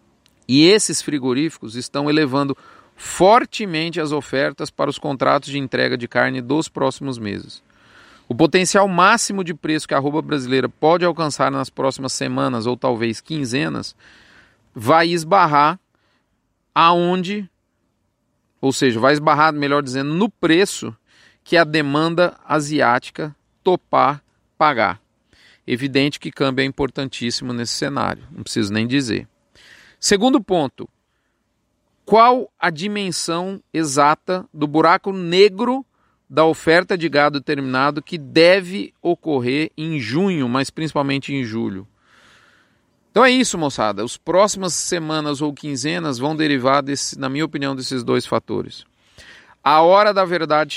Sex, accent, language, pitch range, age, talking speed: male, Brazilian, Portuguese, 130-170 Hz, 40-59, 130 wpm